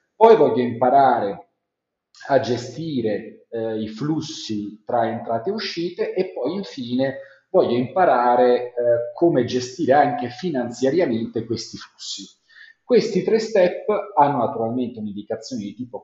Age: 40-59